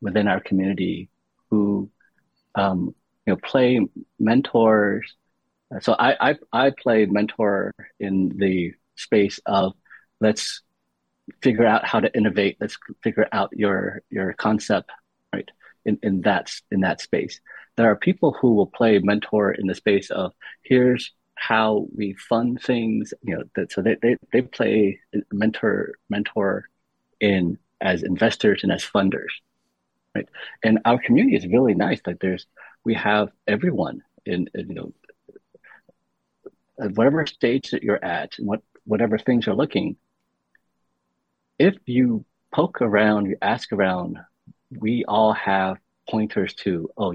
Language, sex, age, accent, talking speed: English, male, 30-49, American, 140 wpm